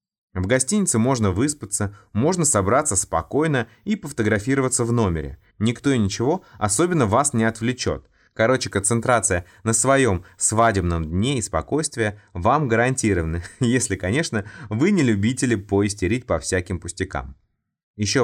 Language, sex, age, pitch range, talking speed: Russian, male, 20-39, 95-130 Hz, 125 wpm